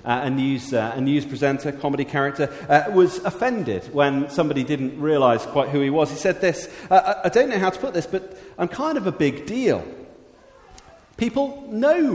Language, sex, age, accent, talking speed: English, male, 40-59, British, 190 wpm